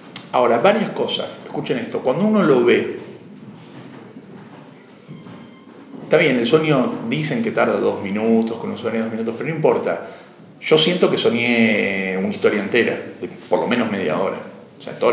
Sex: male